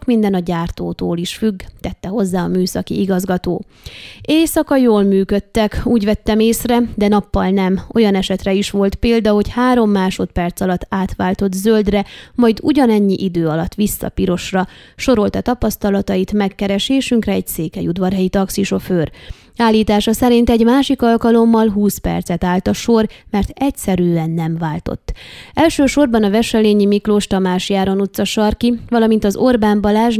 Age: 20-39